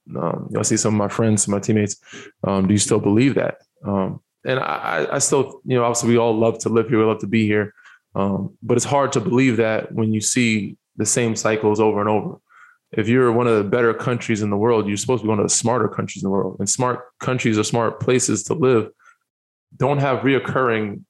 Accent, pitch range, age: American, 110-130 Hz, 20-39